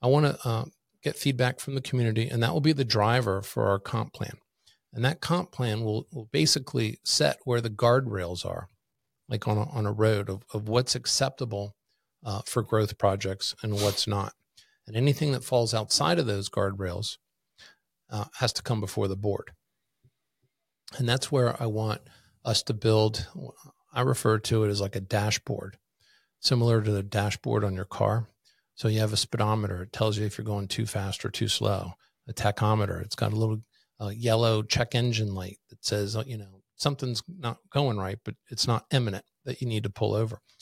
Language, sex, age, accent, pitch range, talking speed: English, male, 50-69, American, 105-125 Hz, 190 wpm